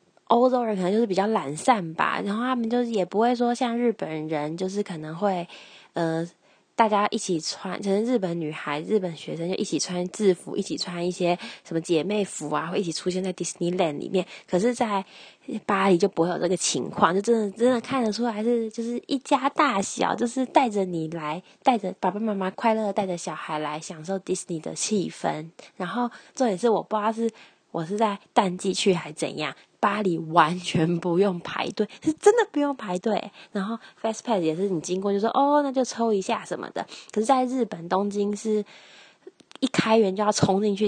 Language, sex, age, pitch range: Chinese, female, 20-39, 180-235 Hz